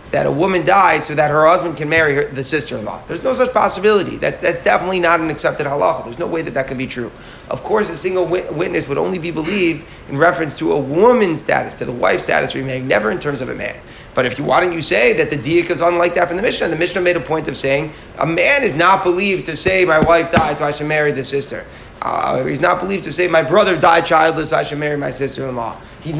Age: 30-49